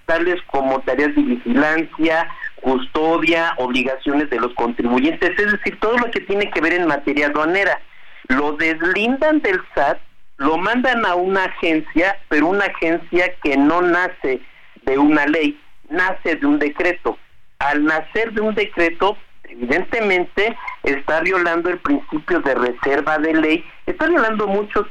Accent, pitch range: Mexican, 145-200 Hz